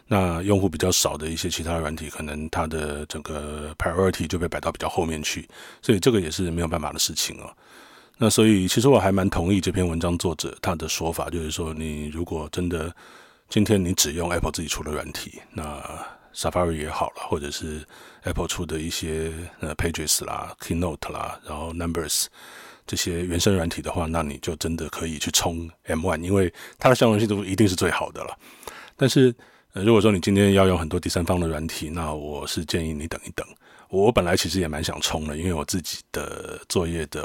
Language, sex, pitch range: Chinese, male, 80-90 Hz